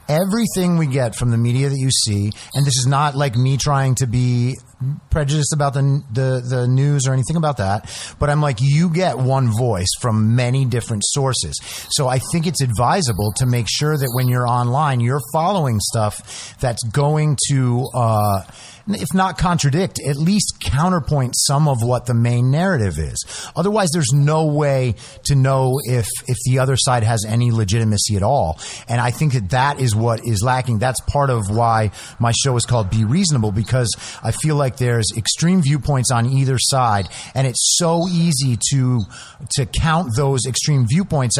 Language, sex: English, male